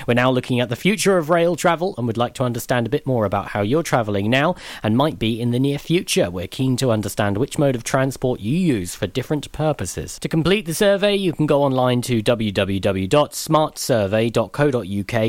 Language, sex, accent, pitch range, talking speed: English, male, British, 110-140 Hz, 205 wpm